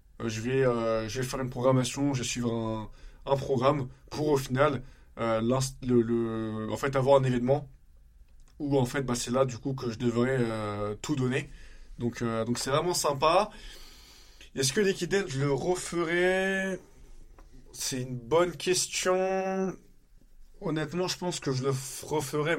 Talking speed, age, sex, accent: 165 wpm, 20-39, male, French